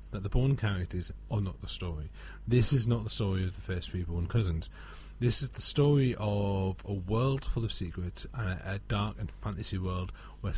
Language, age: English, 40-59